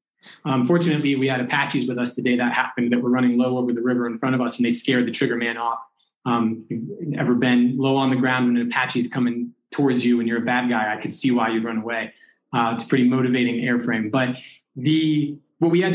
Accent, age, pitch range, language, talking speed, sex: American, 20-39, 125-165 Hz, English, 250 wpm, male